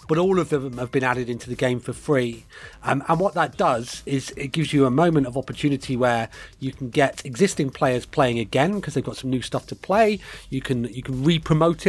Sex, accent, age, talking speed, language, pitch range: male, British, 30-49, 230 wpm, English, 120-155 Hz